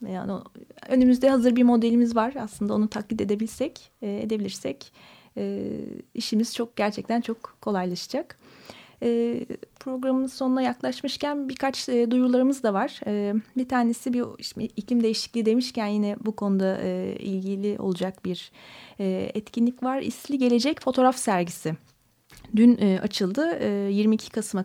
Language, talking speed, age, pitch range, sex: Turkish, 115 wpm, 30-49, 205-255 Hz, female